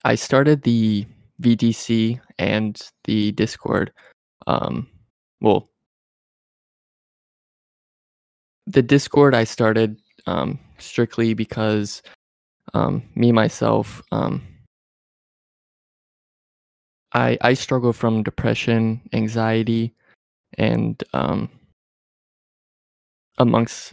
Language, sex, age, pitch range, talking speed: English, male, 20-39, 110-115 Hz, 75 wpm